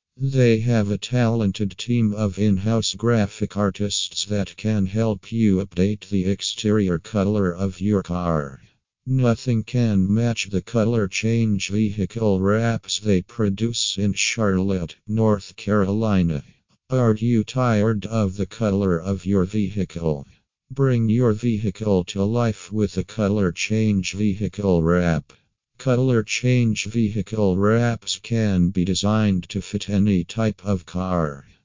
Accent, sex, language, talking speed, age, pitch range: American, male, English, 125 wpm, 50-69, 95-110 Hz